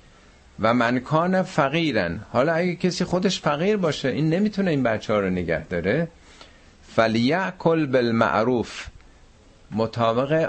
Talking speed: 120 wpm